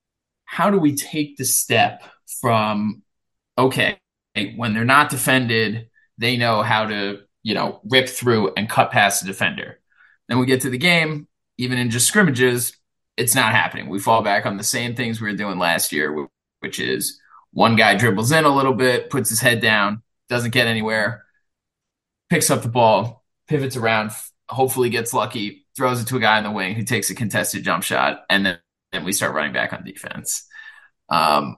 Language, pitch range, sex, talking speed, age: English, 110-140 Hz, male, 190 wpm, 20-39